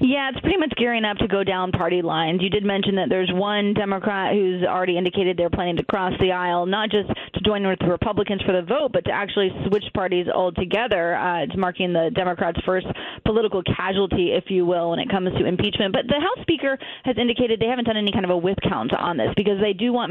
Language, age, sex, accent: English, 30-49, female, American